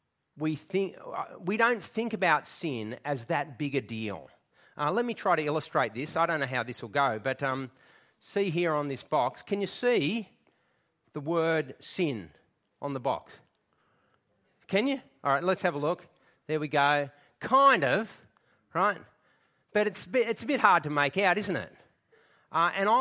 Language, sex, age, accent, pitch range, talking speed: English, male, 40-59, Australian, 140-195 Hz, 185 wpm